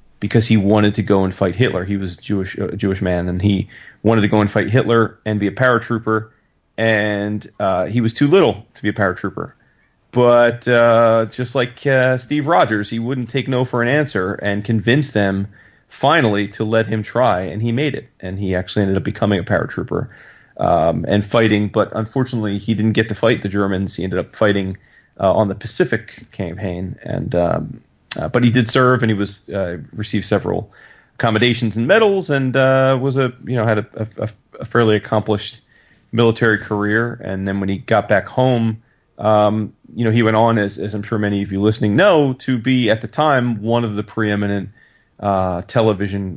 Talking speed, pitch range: 200 wpm, 100-115 Hz